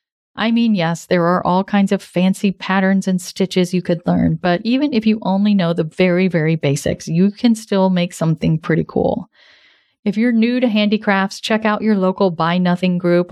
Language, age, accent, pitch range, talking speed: English, 40-59, American, 175-225 Hz, 200 wpm